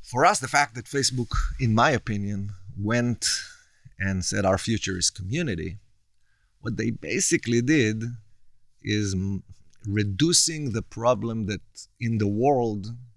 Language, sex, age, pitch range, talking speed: Hebrew, male, 30-49, 95-115 Hz, 130 wpm